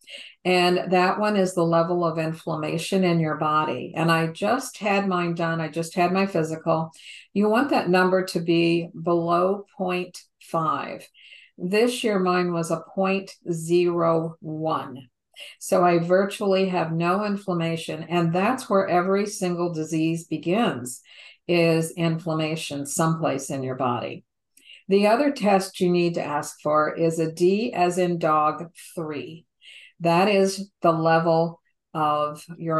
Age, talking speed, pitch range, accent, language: 50-69, 140 wpm, 160-190 Hz, American, English